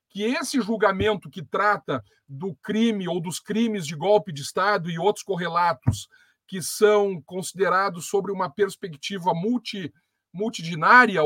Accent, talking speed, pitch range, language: Brazilian, 135 wpm, 175-225 Hz, Portuguese